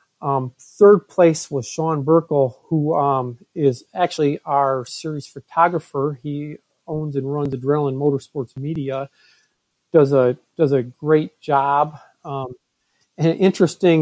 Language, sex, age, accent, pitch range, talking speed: English, male, 40-59, American, 140-165 Hz, 125 wpm